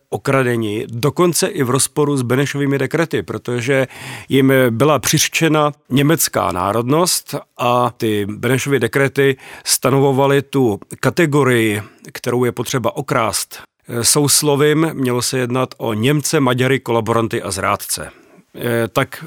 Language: Czech